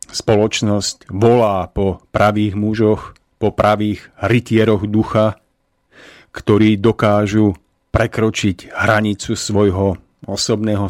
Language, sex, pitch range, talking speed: Slovak, male, 95-110 Hz, 85 wpm